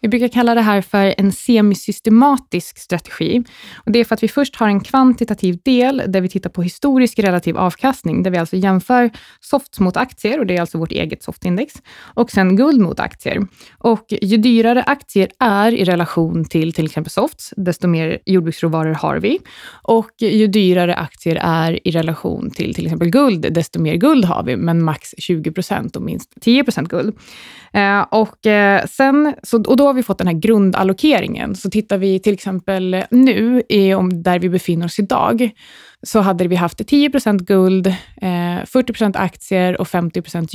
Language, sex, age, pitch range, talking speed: Swedish, female, 20-39, 180-230 Hz, 170 wpm